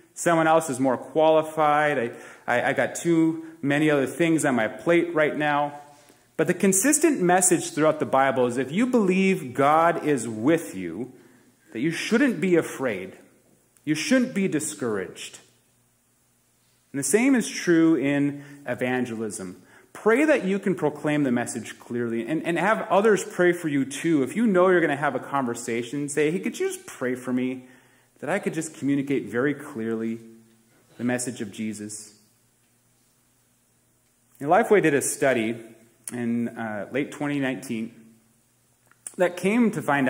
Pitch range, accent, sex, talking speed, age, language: 120-165 Hz, American, male, 160 wpm, 30-49, English